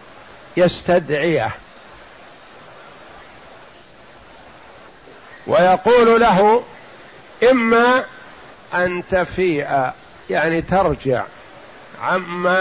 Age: 50-69